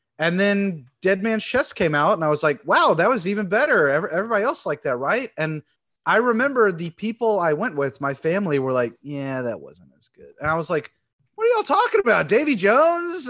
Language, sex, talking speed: English, male, 220 wpm